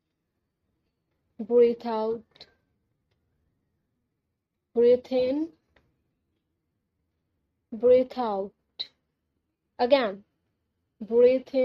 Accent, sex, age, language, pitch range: Indian, female, 30-49, English, 225-295 Hz